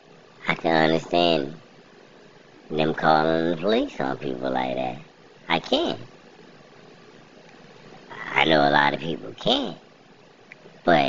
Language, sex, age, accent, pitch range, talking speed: English, male, 30-49, American, 75-115 Hz, 115 wpm